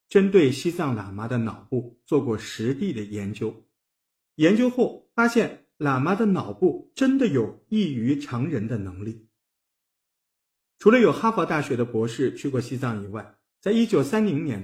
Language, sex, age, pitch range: Chinese, male, 50-69, 120-200 Hz